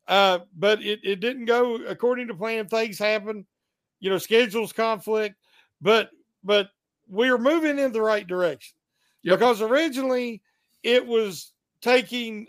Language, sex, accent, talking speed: English, male, American, 150 wpm